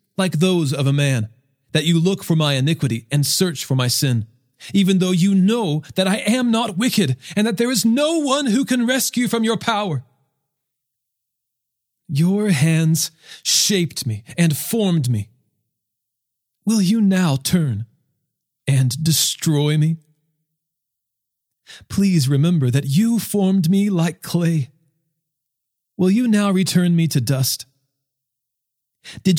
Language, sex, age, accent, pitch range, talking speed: English, male, 40-59, American, 130-190 Hz, 135 wpm